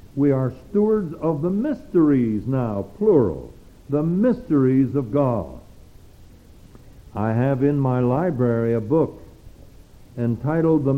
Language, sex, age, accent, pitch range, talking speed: English, male, 60-79, American, 115-155 Hz, 115 wpm